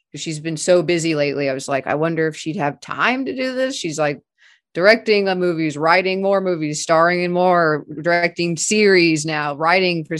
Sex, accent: female, American